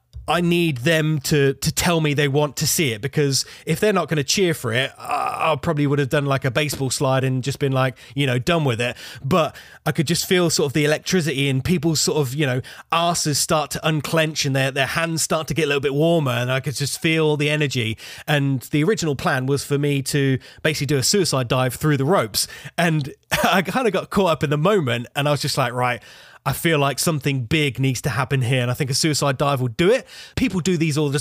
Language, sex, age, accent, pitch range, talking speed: English, male, 20-39, British, 135-160 Hz, 255 wpm